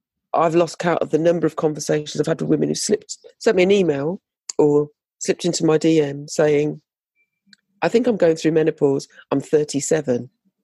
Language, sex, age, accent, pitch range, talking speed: English, female, 40-59, British, 150-225 Hz, 180 wpm